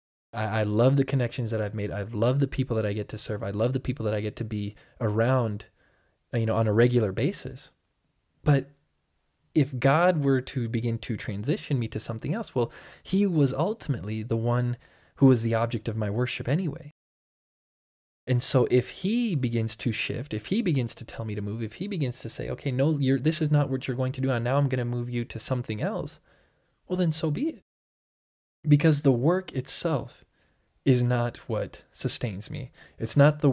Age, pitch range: 20-39, 110-140 Hz